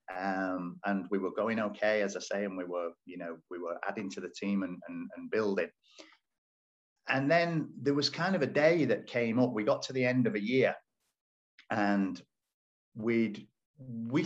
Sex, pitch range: male, 95-135 Hz